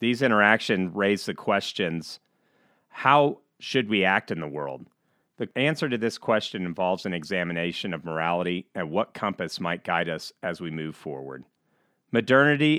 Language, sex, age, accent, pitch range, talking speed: English, male, 40-59, American, 85-110 Hz, 155 wpm